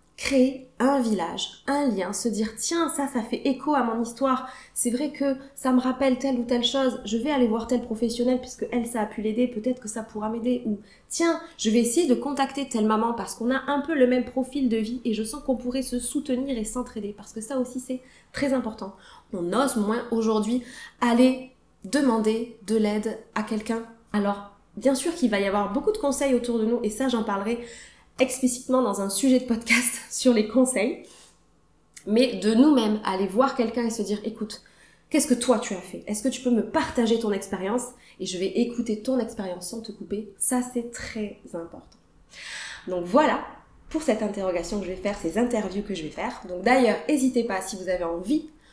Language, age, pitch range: French, 20-39, 215-260 Hz